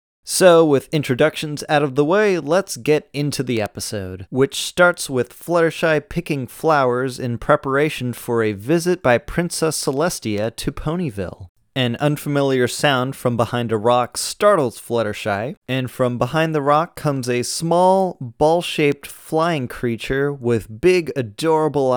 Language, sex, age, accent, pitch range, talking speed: English, male, 30-49, American, 115-145 Hz, 140 wpm